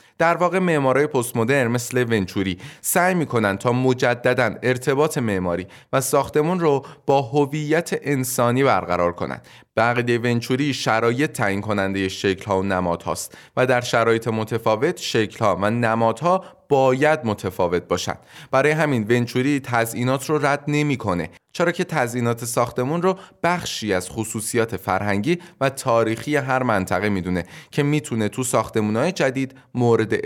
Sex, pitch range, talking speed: male, 105-145 Hz, 135 wpm